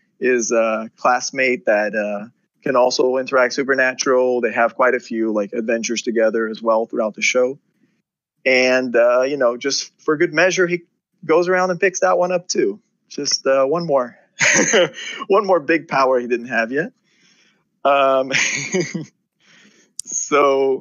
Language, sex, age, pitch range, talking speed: English, male, 20-39, 115-145 Hz, 155 wpm